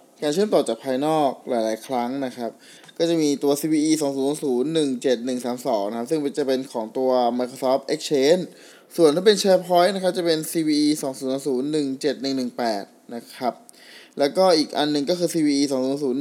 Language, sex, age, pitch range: Thai, male, 20-39, 130-165 Hz